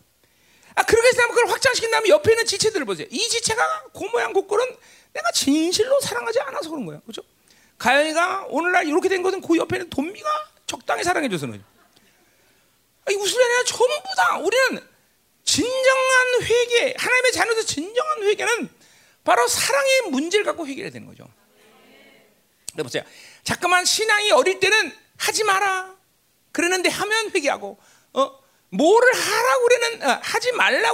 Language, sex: Korean, male